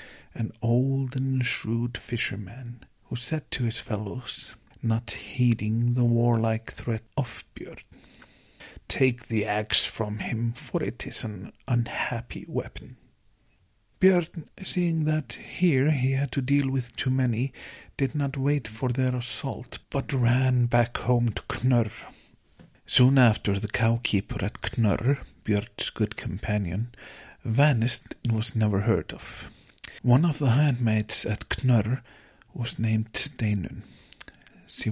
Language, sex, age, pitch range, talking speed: English, male, 50-69, 110-130 Hz, 130 wpm